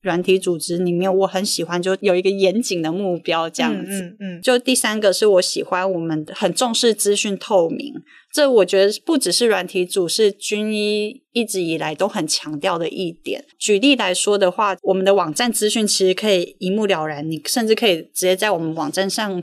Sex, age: female, 20-39